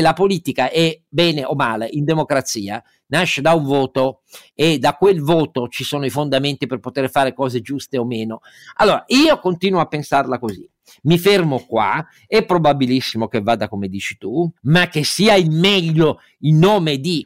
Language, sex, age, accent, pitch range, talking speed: Italian, male, 50-69, native, 130-170 Hz, 175 wpm